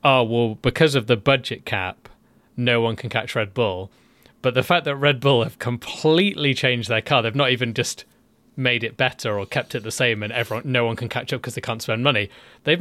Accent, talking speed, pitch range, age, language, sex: British, 230 wpm, 110-135 Hz, 30-49, English, male